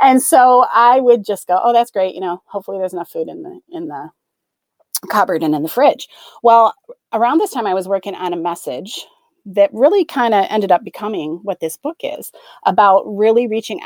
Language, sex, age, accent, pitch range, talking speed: English, female, 30-49, American, 190-275 Hz, 210 wpm